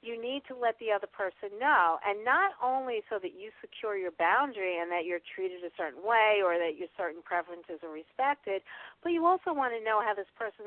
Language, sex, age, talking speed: English, female, 50-69, 225 wpm